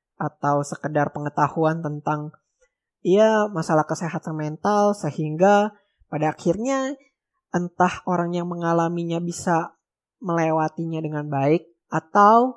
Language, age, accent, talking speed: Indonesian, 20-39, native, 100 wpm